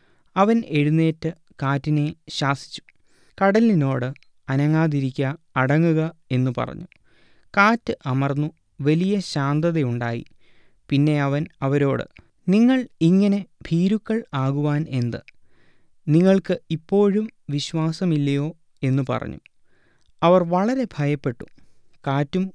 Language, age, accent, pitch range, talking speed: Malayalam, 20-39, native, 130-175 Hz, 80 wpm